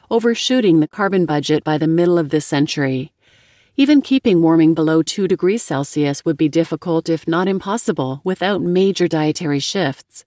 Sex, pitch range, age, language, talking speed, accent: female, 160-205 Hz, 40-59, English, 160 wpm, American